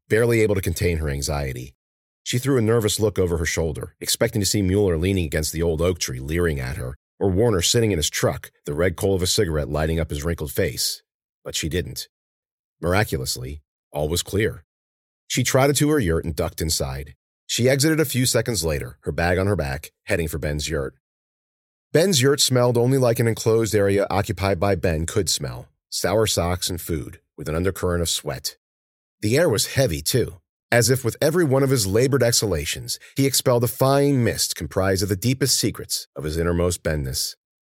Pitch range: 80-115 Hz